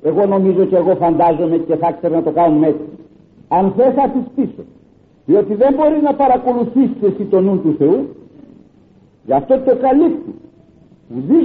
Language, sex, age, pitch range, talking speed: Greek, male, 50-69, 190-275 Hz, 160 wpm